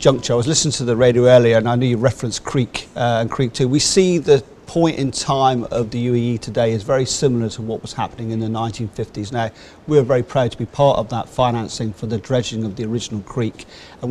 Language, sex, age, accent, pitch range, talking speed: English, male, 40-59, British, 115-135 Hz, 240 wpm